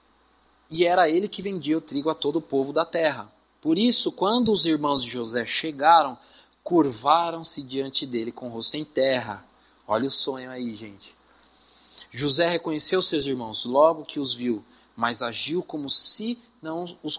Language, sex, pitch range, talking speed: Portuguese, male, 120-170 Hz, 170 wpm